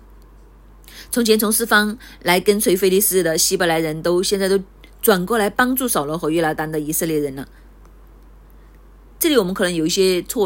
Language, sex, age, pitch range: Chinese, female, 30-49, 160-210 Hz